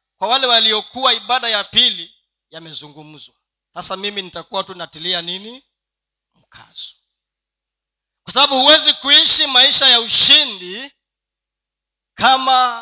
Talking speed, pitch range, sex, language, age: 100 wpm, 160-265 Hz, male, Swahili, 40-59